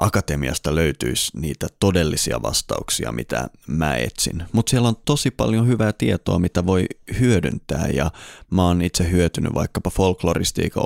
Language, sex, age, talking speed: Finnish, male, 30-49, 140 wpm